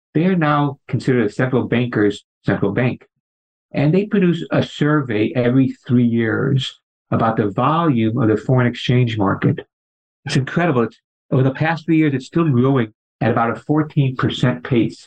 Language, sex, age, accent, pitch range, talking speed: English, male, 50-69, American, 115-150 Hz, 160 wpm